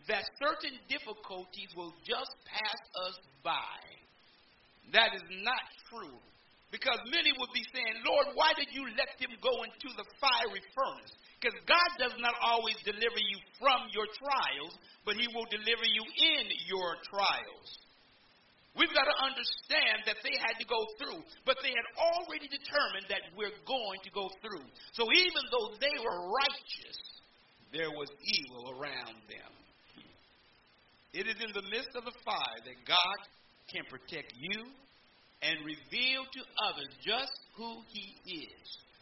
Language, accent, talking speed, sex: English, American, 150 wpm, male